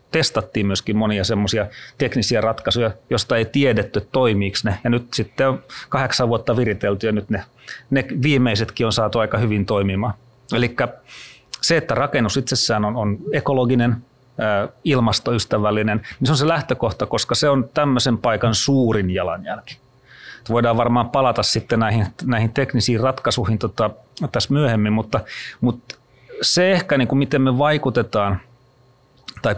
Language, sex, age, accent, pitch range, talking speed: Finnish, male, 30-49, native, 105-130 Hz, 135 wpm